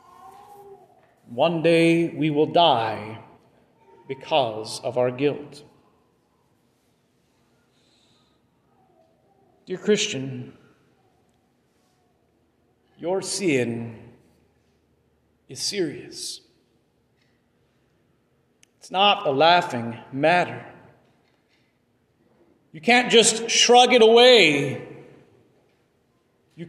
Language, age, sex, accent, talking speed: English, 40-59, male, American, 60 wpm